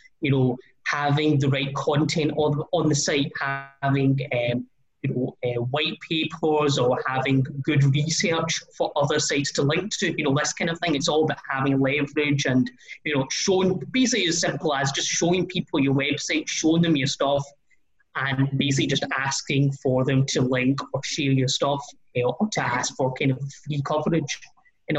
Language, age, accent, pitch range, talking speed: English, 20-39, British, 135-165 Hz, 190 wpm